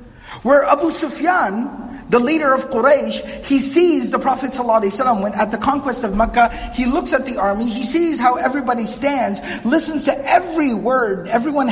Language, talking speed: English, 170 wpm